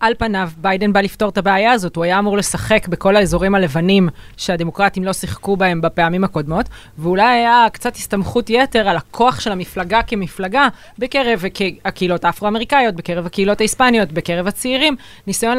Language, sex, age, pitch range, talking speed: Hebrew, female, 20-39, 180-220 Hz, 155 wpm